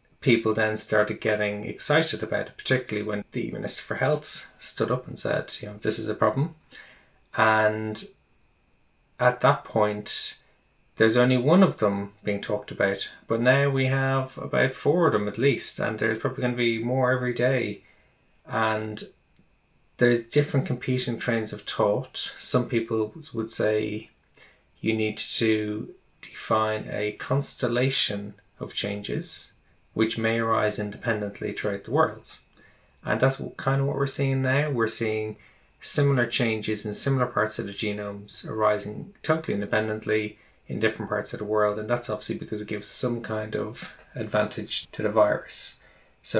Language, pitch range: English, 105-125 Hz